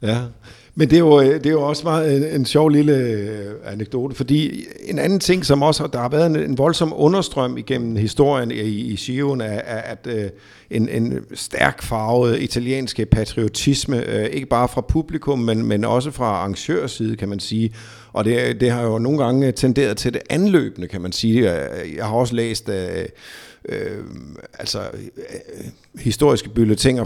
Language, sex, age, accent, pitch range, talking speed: Danish, male, 50-69, native, 110-135 Hz, 180 wpm